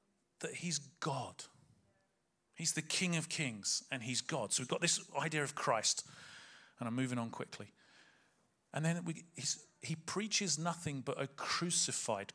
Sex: male